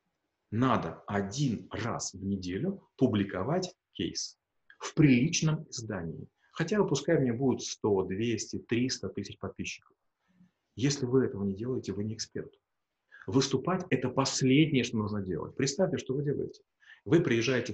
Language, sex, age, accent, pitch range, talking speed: Russian, male, 30-49, native, 105-135 Hz, 140 wpm